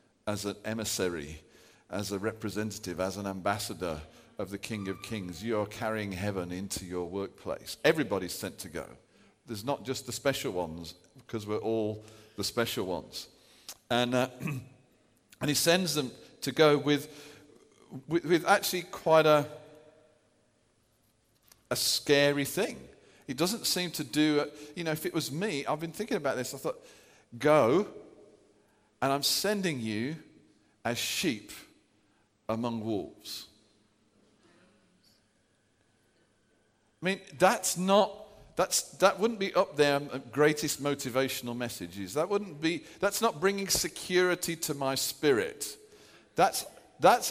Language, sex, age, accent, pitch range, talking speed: English, male, 50-69, British, 110-170 Hz, 135 wpm